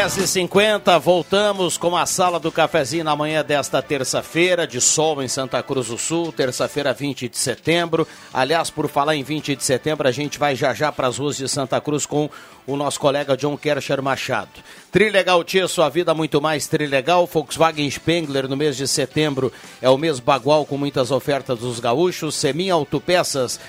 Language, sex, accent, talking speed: Portuguese, male, Brazilian, 185 wpm